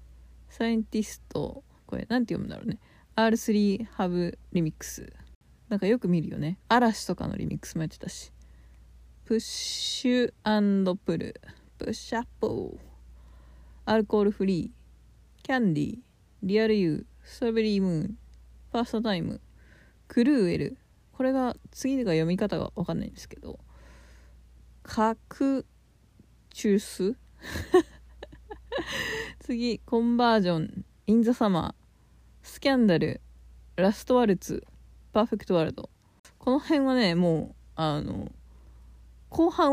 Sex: female